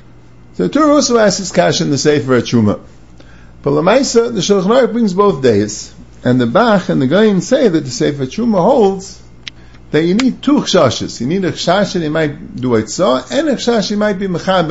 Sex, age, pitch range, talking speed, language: male, 50-69, 140-205 Hz, 210 wpm, English